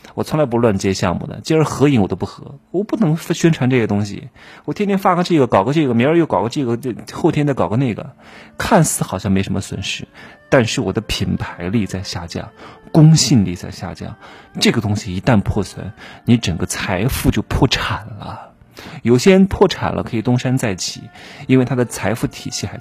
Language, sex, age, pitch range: Chinese, male, 30-49, 100-130 Hz